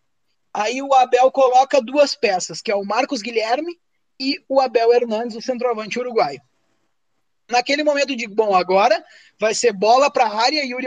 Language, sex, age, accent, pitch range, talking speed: Portuguese, male, 20-39, Brazilian, 235-285 Hz, 165 wpm